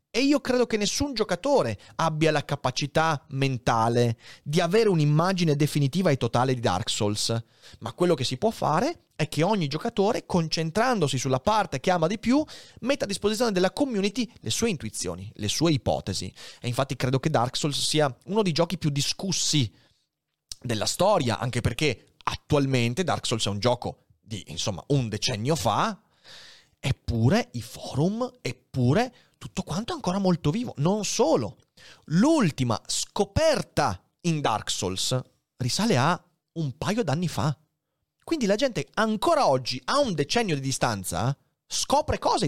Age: 30-49